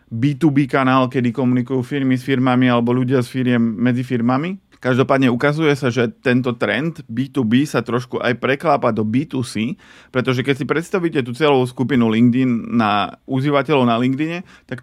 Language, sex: Slovak, male